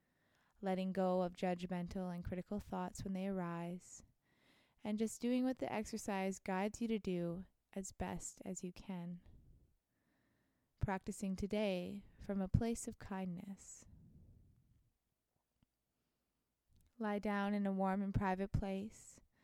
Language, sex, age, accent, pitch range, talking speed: English, female, 20-39, American, 180-205 Hz, 125 wpm